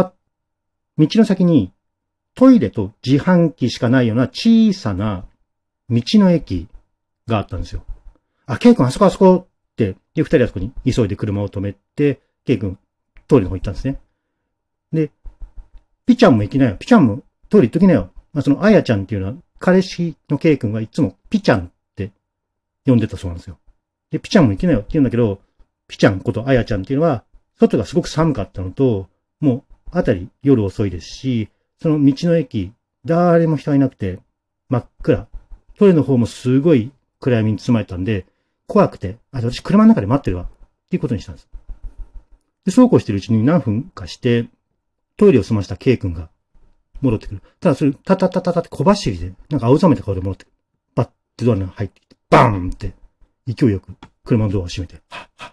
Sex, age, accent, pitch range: male, 40-59, native, 100-145 Hz